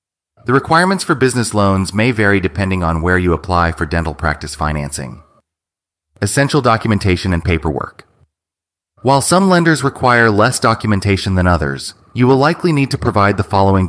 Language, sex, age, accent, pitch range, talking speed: English, male, 30-49, American, 85-115 Hz, 155 wpm